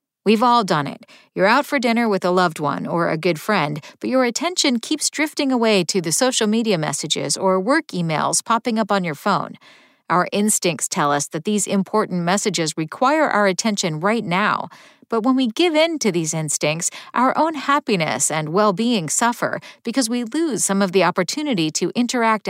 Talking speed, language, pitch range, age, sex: 190 wpm, English, 180-260 Hz, 50-69, female